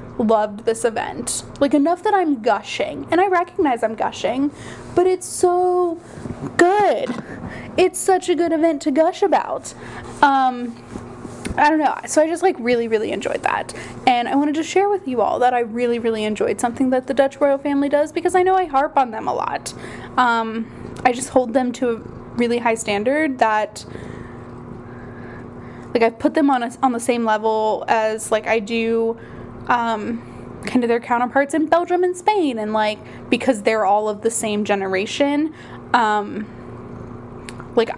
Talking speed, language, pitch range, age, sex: 175 wpm, English, 210-295 Hz, 10-29, female